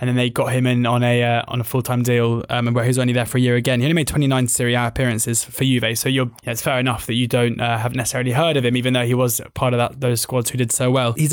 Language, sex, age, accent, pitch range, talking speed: English, male, 20-39, British, 120-140 Hz, 325 wpm